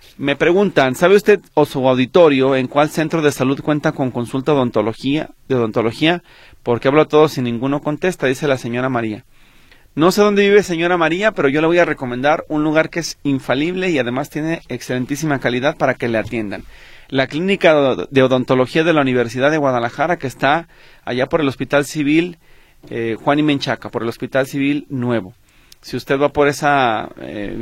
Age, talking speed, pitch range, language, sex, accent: 30-49, 190 wpm, 125-150 Hz, Spanish, male, Mexican